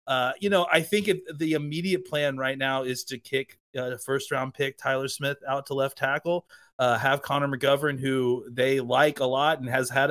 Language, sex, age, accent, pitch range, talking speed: English, male, 30-49, American, 130-150 Hz, 220 wpm